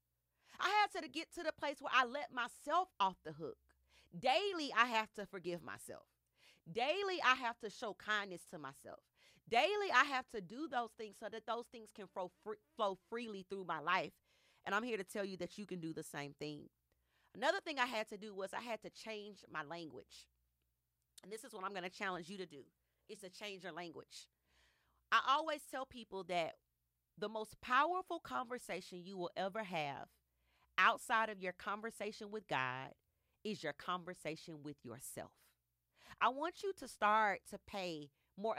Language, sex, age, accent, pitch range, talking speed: English, female, 40-59, American, 160-230 Hz, 185 wpm